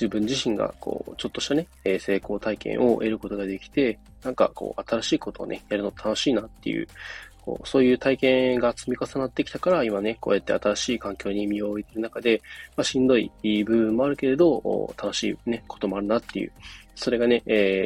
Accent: native